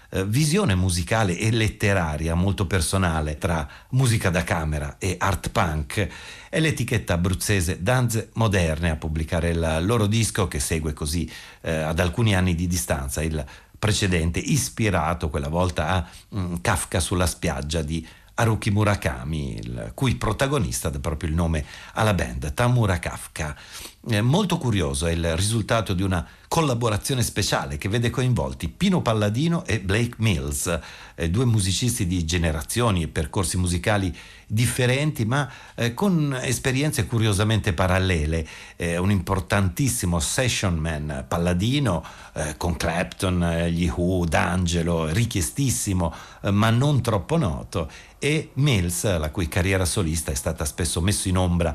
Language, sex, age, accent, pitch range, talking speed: Italian, male, 50-69, native, 85-110 Hz, 140 wpm